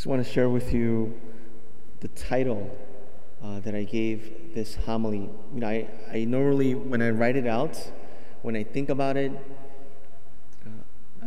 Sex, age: male, 30-49